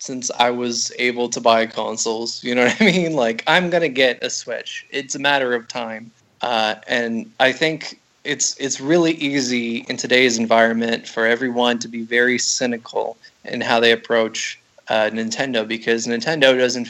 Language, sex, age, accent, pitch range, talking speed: English, male, 20-39, American, 115-130 Hz, 180 wpm